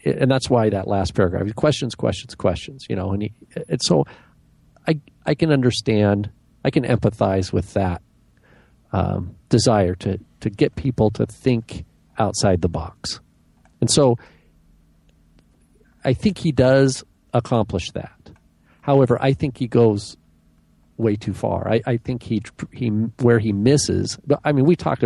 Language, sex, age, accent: English, male, 50-69, American